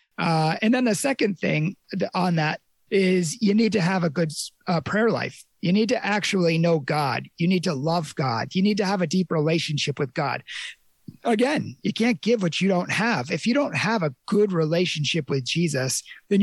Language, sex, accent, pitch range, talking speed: English, male, American, 155-200 Hz, 205 wpm